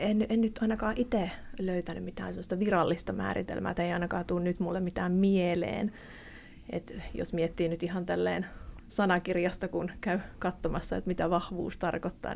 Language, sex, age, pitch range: Finnish, female, 30-49, 180-225 Hz